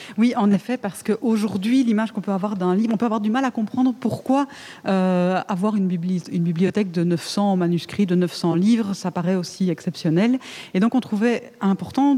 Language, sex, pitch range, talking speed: French, female, 175-230 Hz, 185 wpm